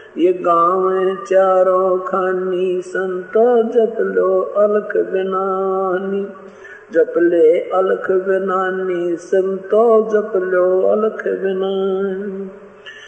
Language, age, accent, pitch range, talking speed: Hindi, 50-69, native, 185-220 Hz, 80 wpm